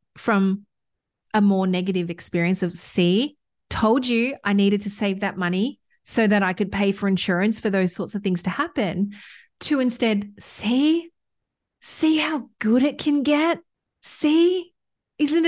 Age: 30-49